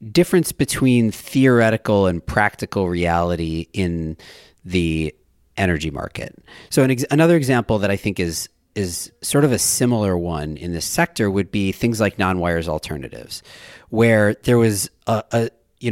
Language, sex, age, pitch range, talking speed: English, male, 40-59, 90-115 Hz, 155 wpm